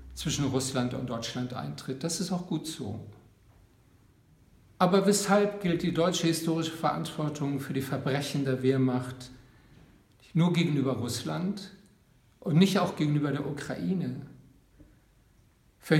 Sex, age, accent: male, 50-69, German